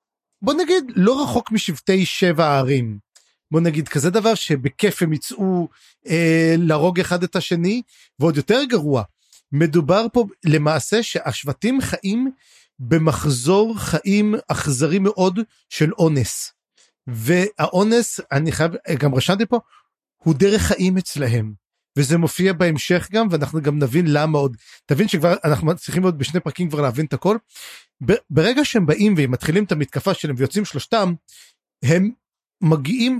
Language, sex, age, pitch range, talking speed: Hebrew, male, 30-49, 155-210 Hz, 130 wpm